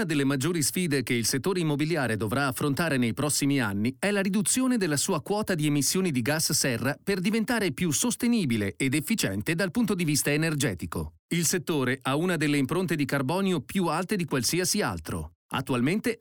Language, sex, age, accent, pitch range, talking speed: Italian, male, 40-59, native, 135-200 Hz, 180 wpm